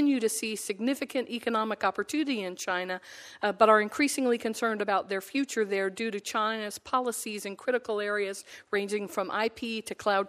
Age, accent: 50-69, American